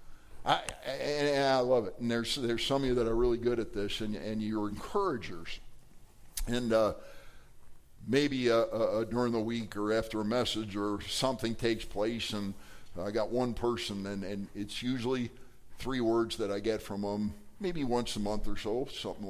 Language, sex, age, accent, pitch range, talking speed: English, male, 50-69, American, 110-135 Hz, 185 wpm